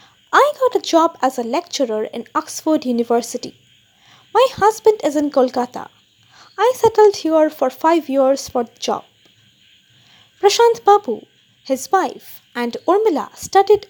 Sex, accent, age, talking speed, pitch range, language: female, native, 20-39, 135 wpm, 255-390 Hz, Hindi